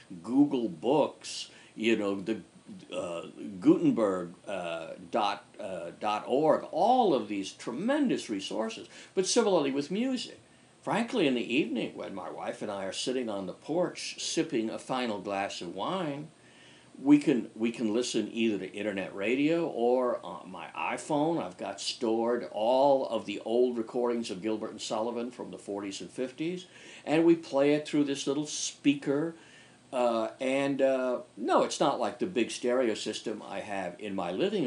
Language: English